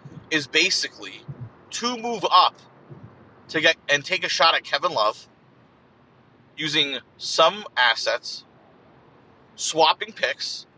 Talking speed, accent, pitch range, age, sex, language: 105 wpm, American, 125-170 Hz, 30-49, male, English